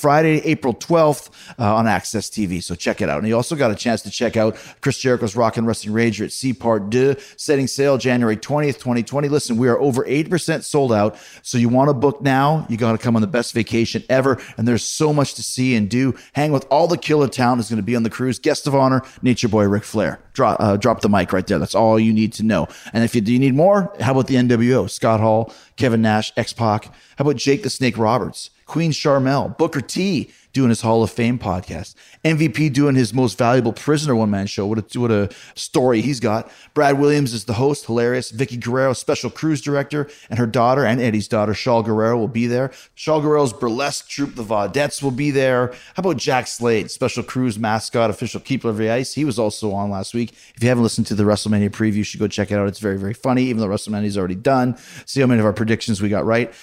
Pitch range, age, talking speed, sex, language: 110-135 Hz, 30-49, 240 wpm, male, English